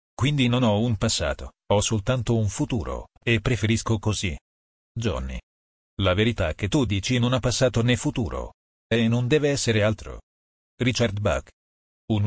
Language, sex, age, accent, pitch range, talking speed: Italian, male, 40-59, native, 100-125 Hz, 150 wpm